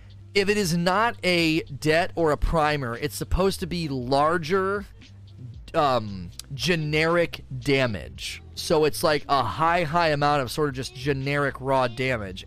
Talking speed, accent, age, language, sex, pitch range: 150 wpm, American, 30-49, English, male, 115-170 Hz